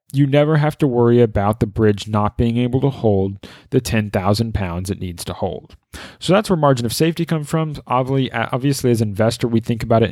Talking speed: 215 wpm